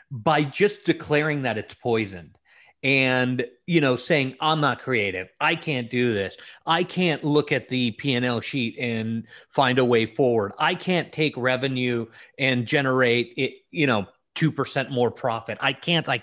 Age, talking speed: 30-49, 165 wpm